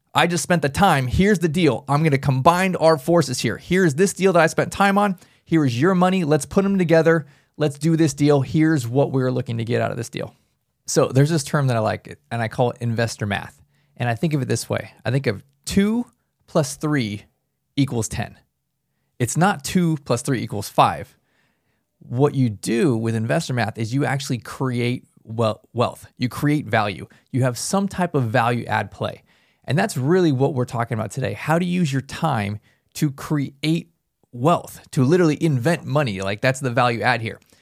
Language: English